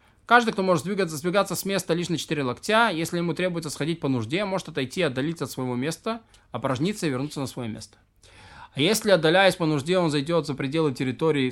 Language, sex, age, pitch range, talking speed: Russian, male, 20-39, 145-205 Hz, 205 wpm